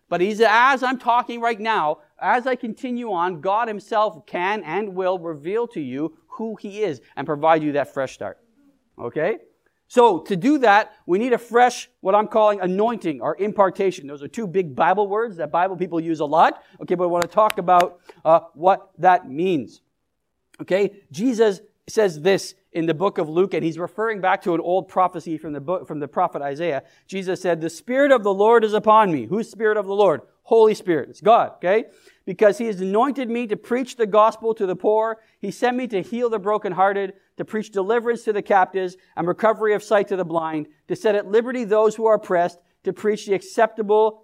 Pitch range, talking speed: 175-220 Hz, 210 wpm